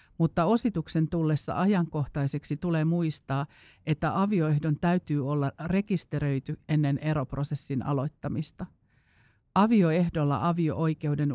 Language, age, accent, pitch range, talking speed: Finnish, 50-69, native, 140-170 Hz, 85 wpm